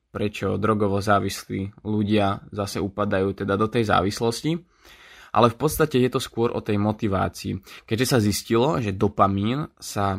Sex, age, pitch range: male, 20-39, 100-115 Hz